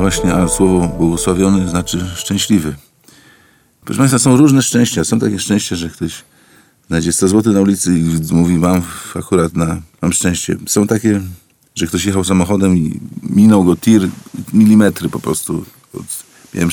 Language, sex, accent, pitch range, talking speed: Polish, male, native, 90-110 Hz, 145 wpm